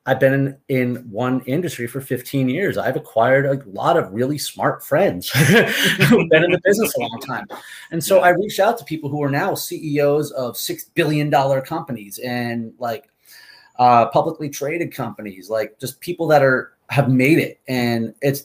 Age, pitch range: 30-49, 120-150 Hz